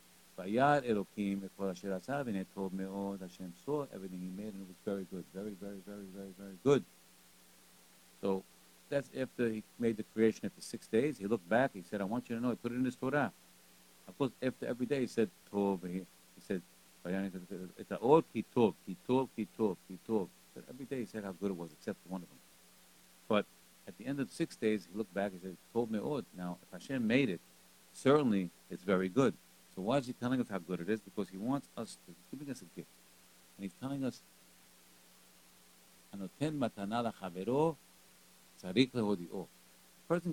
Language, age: English, 60-79